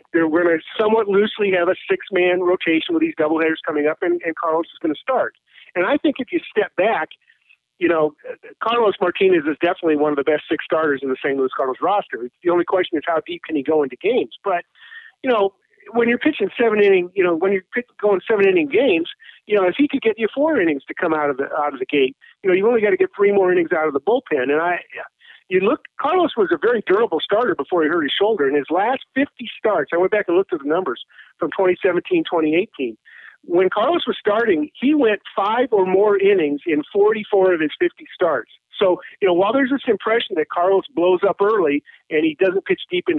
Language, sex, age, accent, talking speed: English, male, 50-69, American, 240 wpm